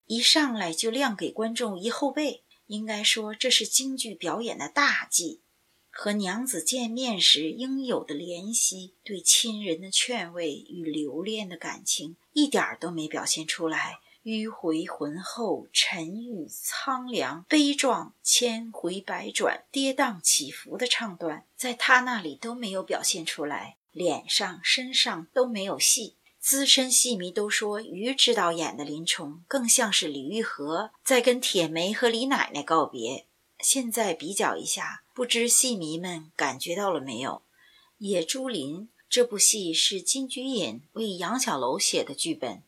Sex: female